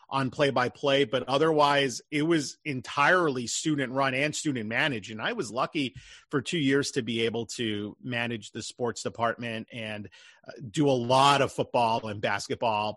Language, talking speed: English, 155 wpm